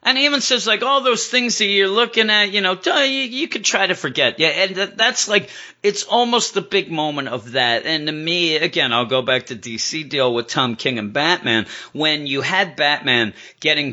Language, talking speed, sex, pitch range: English, 220 wpm, male, 115-180 Hz